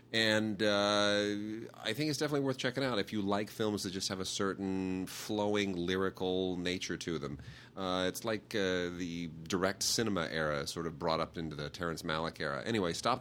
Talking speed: 190 wpm